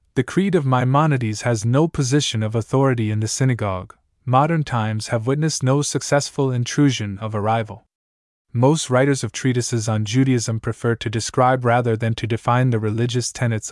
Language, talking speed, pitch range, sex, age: English, 165 wpm, 110-135 Hz, male, 20-39